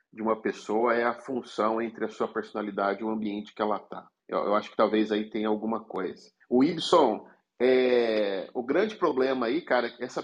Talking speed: 210 wpm